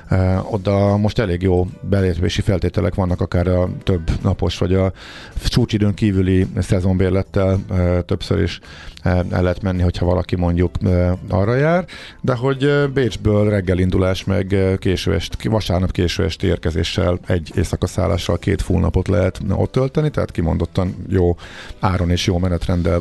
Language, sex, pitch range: Hungarian, male, 90-105 Hz